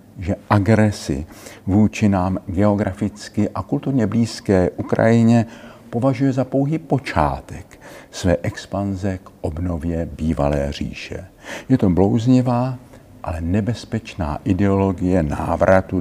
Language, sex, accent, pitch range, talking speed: Czech, male, native, 90-115 Hz, 95 wpm